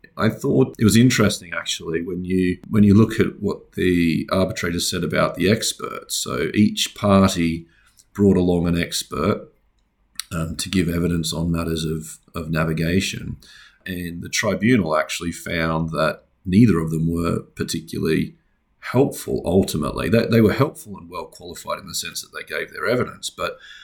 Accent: Australian